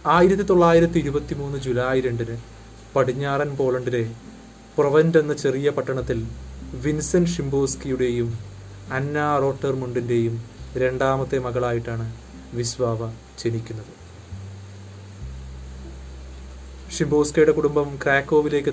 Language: Malayalam